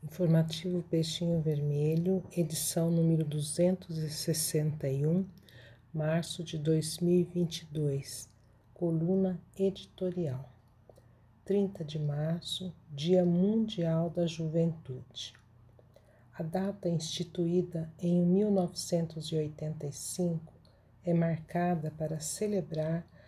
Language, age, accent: Portuguese, 50-69, Brazilian